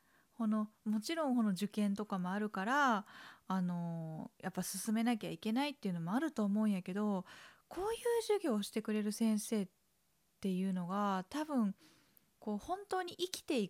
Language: Japanese